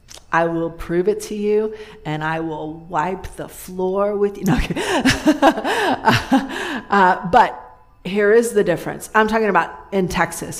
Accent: American